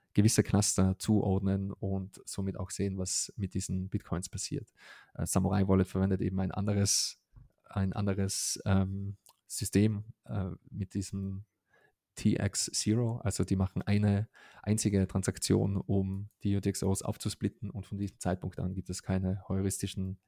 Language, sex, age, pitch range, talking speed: German, male, 20-39, 95-105 Hz, 140 wpm